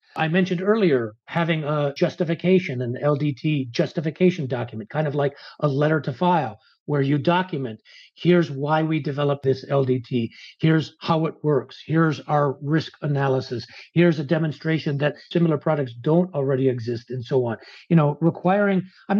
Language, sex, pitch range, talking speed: English, male, 135-175 Hz, 155 wpm